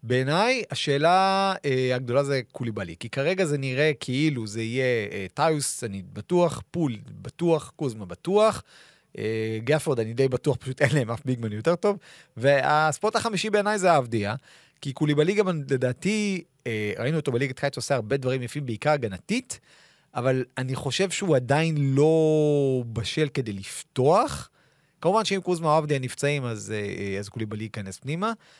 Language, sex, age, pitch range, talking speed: Hebrew, male, 30-49, 120-160 Hz, 155 wpm